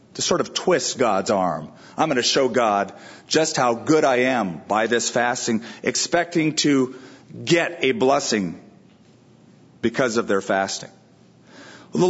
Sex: male